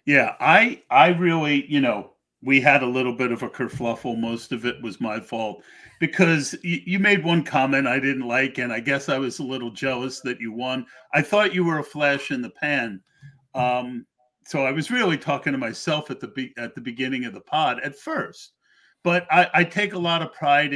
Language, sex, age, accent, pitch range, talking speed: English, male, 50-69, American, 130-160 Hz, 220 wpm